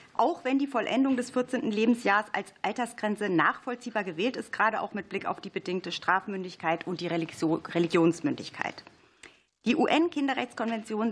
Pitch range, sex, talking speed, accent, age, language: 185-235 Hz, female, 135 wpm, German, 40-59, German